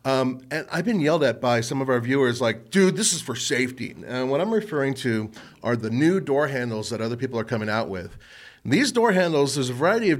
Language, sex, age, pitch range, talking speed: English, male, 40-59, 110-145 Hz, 240 wpm